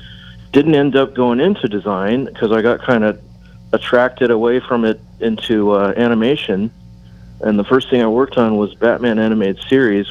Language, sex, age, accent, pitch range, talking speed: English, male, 40-59, American, 95-115 Hz, 170 wpm